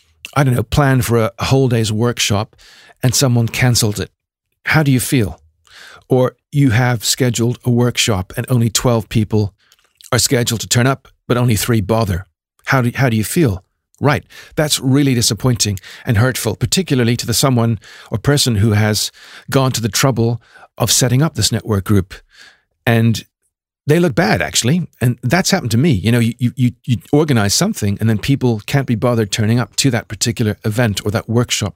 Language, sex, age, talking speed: English, male, 50-69, 185 wpm